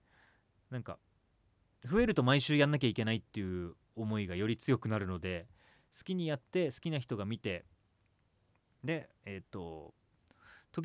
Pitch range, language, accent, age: 100-165 Hz, Japanese, native, 30-49